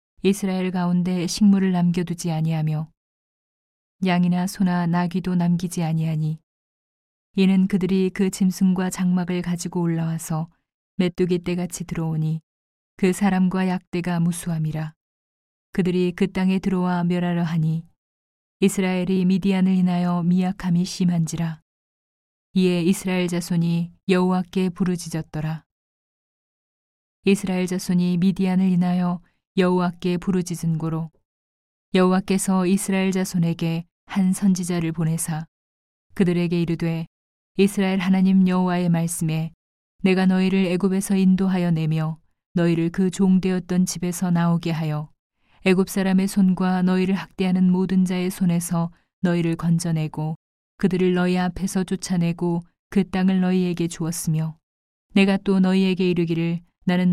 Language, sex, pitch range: Korean, female, 165-185 Hz